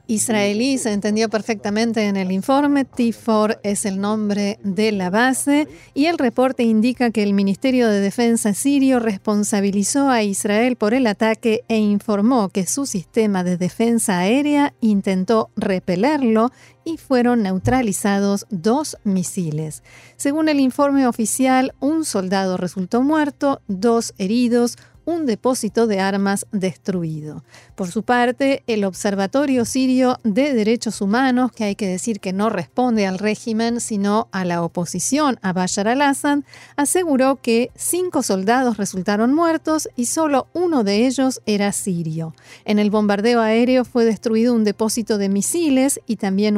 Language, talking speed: Spanish, 140 wpm